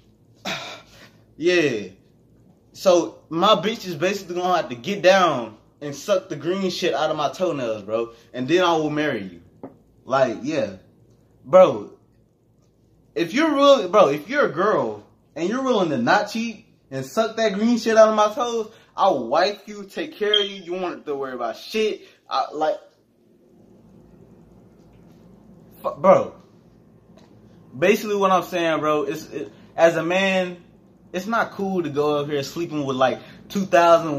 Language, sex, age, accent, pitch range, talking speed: English, male, 20-39, American, 160-215 Hz, 165 wpm